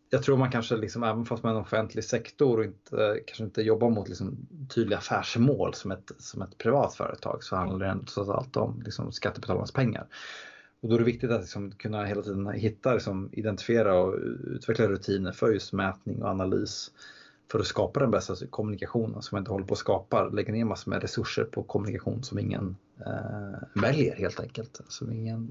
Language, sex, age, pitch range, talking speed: Swedish, male, 30-49, 100-120 Hz, 200 wpm